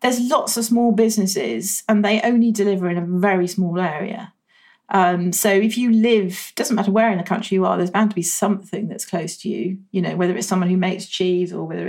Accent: British